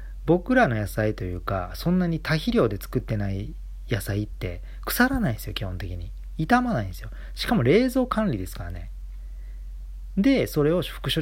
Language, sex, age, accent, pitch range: Japanese, male, 40-59, native, 95-140 Hz